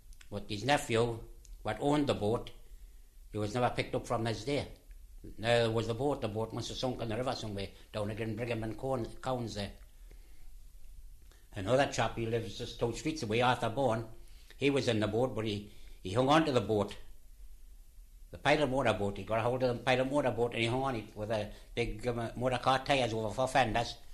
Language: English